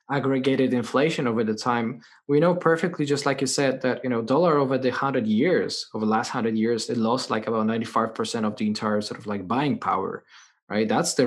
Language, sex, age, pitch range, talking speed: English, male, 20-39, 115-140 Hz, 220 wpm